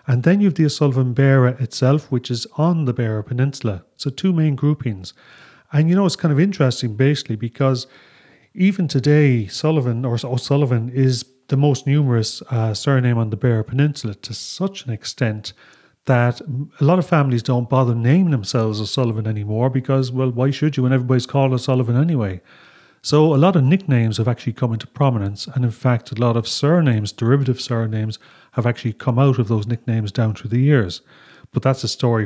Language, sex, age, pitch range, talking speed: English, male, 30-49, 120-145 Hz, 190 wpm